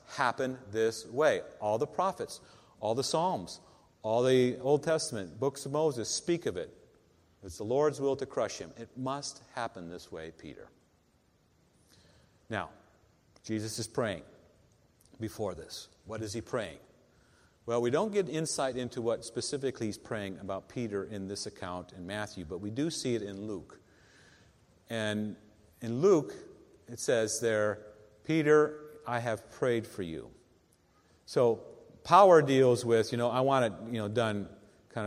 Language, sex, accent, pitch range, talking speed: English, male, American, 105-140 Hz, 155 wpm